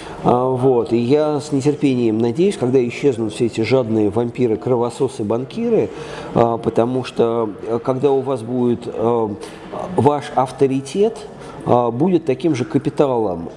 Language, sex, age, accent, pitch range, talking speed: Russian, male, 40-59, native, 115-145 Hz, 115 wpm